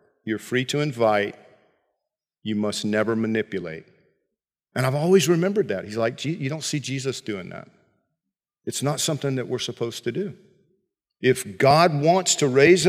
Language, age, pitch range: English, 50-69, 130-190 Hz